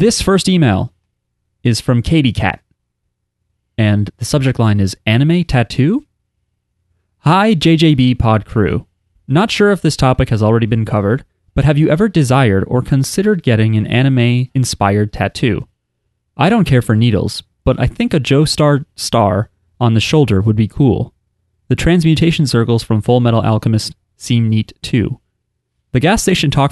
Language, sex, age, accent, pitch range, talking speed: English, male, 30-49, American, 105-140 Hz, 155 wpm